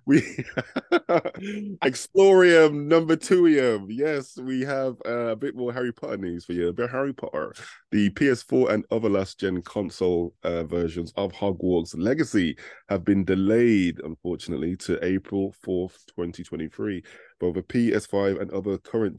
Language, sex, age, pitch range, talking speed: English, male, 20-39, 85-115 Hz, 140 wpm